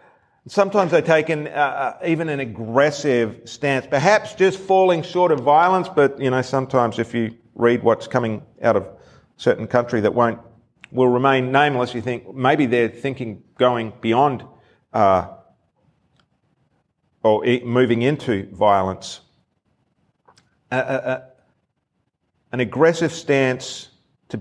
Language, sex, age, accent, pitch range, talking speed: English, male, 40-59, Australian, 125-165 Hz, 125 wpm